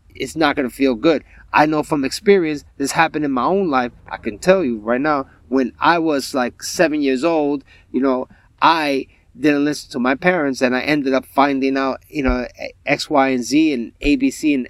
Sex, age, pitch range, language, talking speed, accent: male, 30-49, 95-160 Hz, English, 210 wpm, American